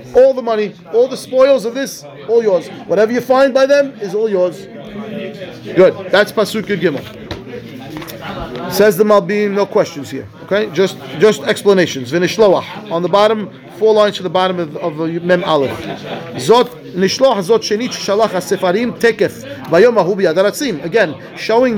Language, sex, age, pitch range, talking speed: English, male, 30-49, 180-230 Hz, 155 wpm